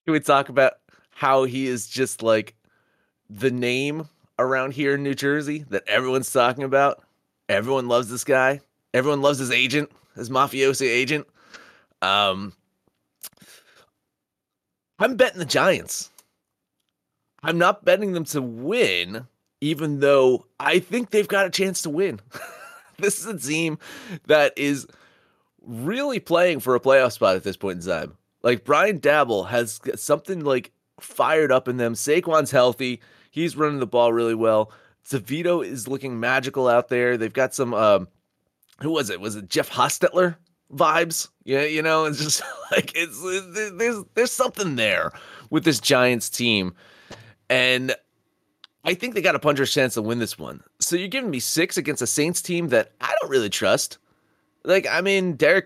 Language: English